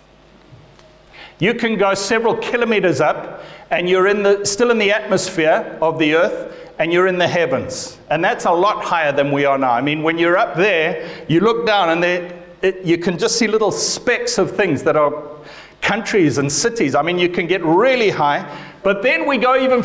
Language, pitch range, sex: English, 175-250 Hz, male